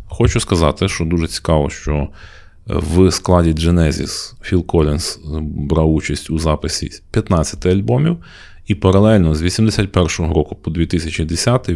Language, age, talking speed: Ukrainian, 30-49, 120 wpm